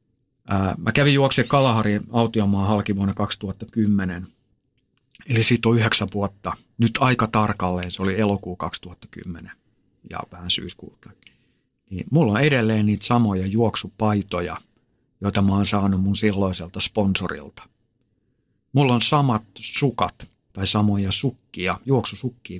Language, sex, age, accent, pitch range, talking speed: Finnish, male, 50-69, native, 100-130 Hz, 115 wpm